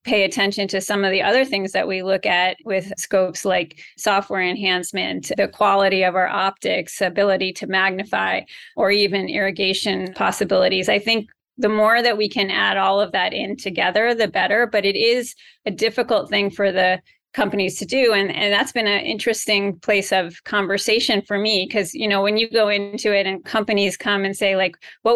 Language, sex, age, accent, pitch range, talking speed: English, female, 30-49, American, 195-220 Hz, 195 wpm